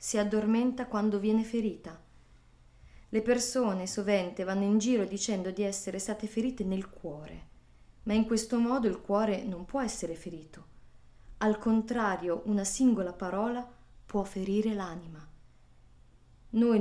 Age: 40-59